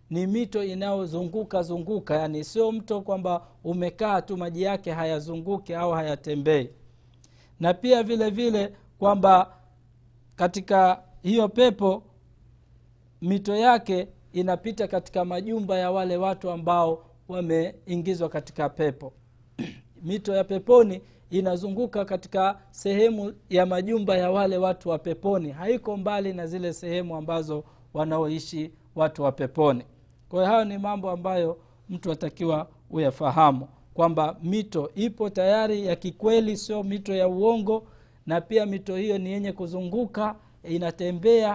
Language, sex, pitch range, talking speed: Swahili, male, 155-200 Hz, 120 wpm